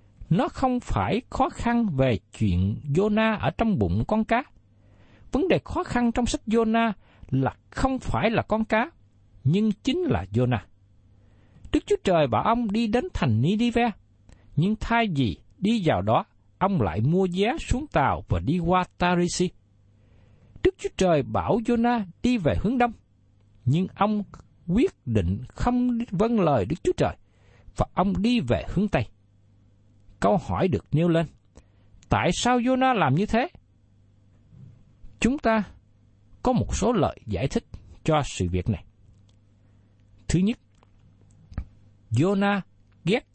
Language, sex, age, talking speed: Vietnamese, male, 60-79, 150 wpm